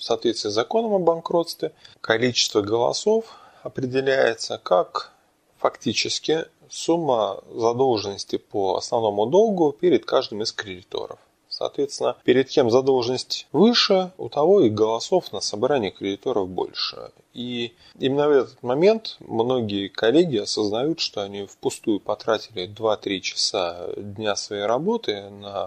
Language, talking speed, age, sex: Russian, 120 wpm, 20-39, male